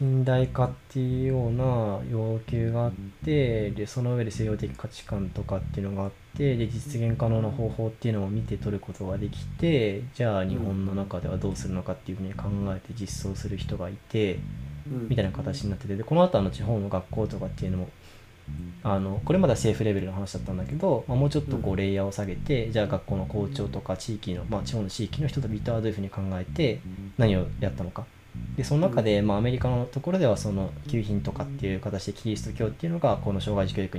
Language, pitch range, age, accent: Japanese, 95-120 Hz, 20-39, native